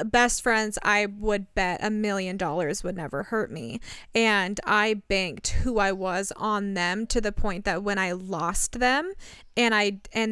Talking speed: 180 wpm